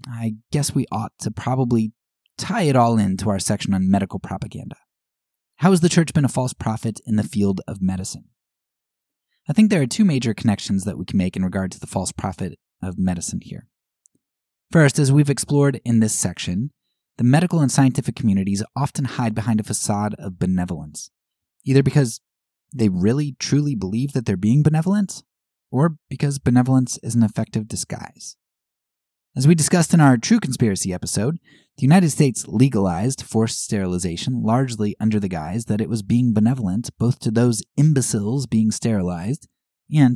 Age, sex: 20-39, male